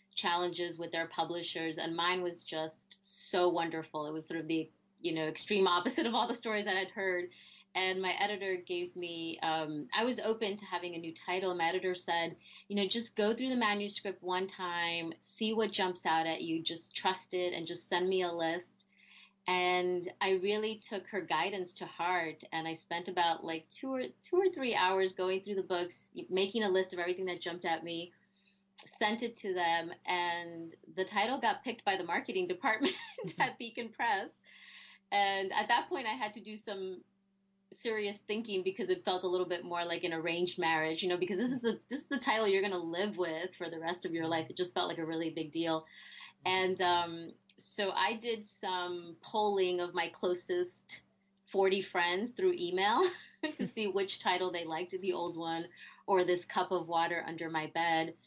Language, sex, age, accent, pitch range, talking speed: English, female, 30-49, American, 170-200 Hz, 205 wpm